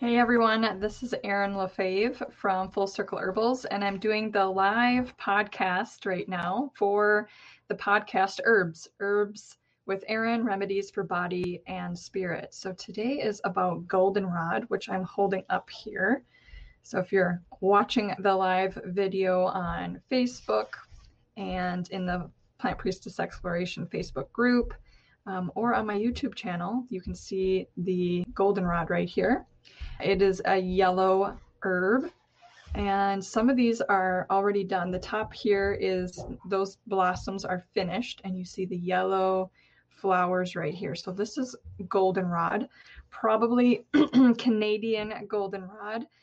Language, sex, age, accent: English, female, 20-39, American